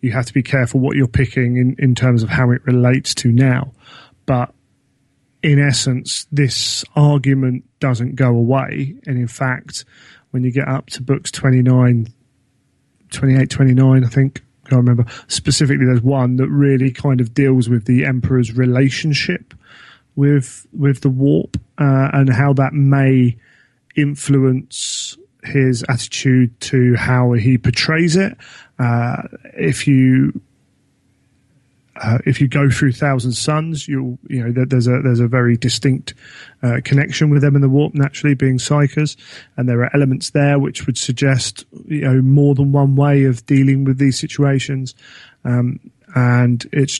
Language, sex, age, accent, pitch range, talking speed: English, male, 30-49, British, 125-140 Hz, 155 wpm